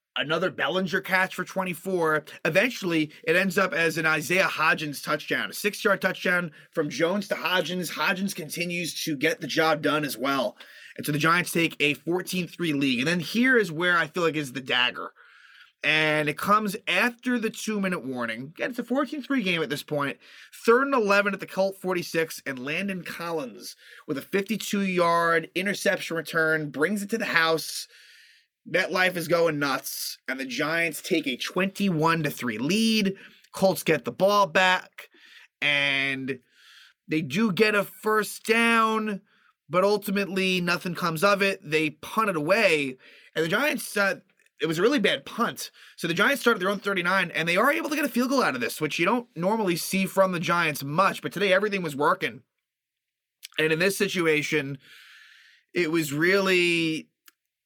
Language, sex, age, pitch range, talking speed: English, male, 30-49, 155-200 Hz, 180 wpm